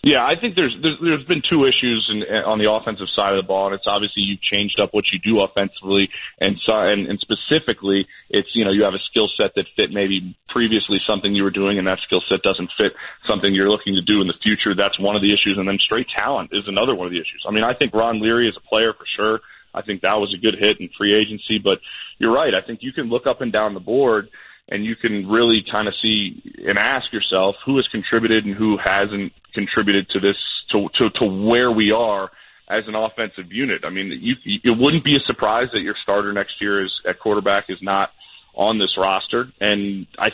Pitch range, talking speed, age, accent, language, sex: 100-115 Hz, 240 wpm, 30-49, American, English, male